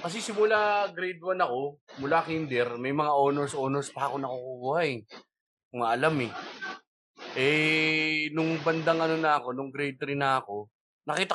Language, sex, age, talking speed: Filipino, male, 20-39, 160 wpm